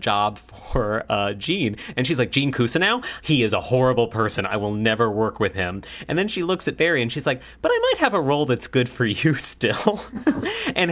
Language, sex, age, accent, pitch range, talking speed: English, male, 30-49, American, 105-130 Hz, 225 wpm